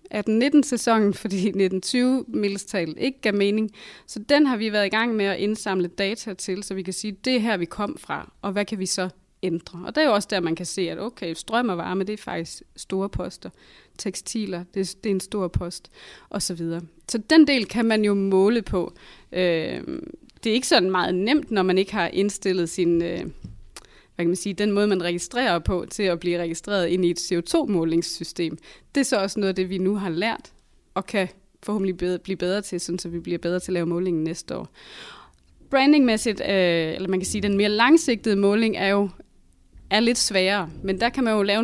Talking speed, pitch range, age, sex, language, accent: 210 wpm, 175-210 Hz, 20-39, female, Danish, native